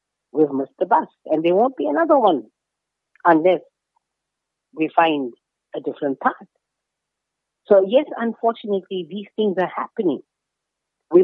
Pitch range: 145-200 Hz